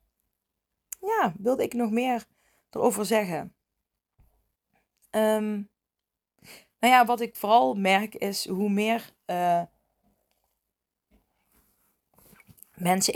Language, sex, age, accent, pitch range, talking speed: Dutch, female, 20-39, Dutch, 190-230 Hz, 85 wpm